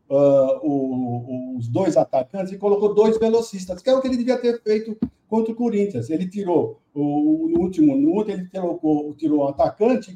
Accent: Brazilian